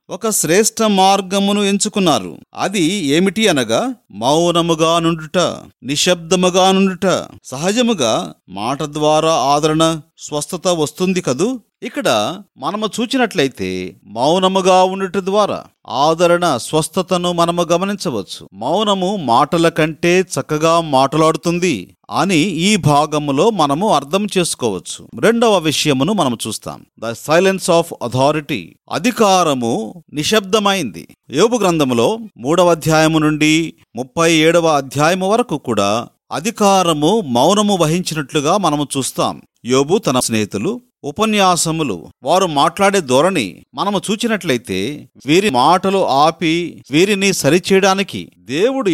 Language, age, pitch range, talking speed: Telugu, 40-59, 155-200 Hz, 95 wpm